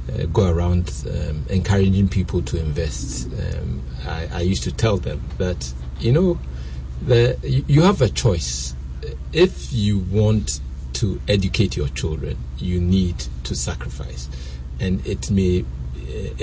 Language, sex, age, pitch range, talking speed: English, male, 60-79, 65-100 Hz, 140 wpm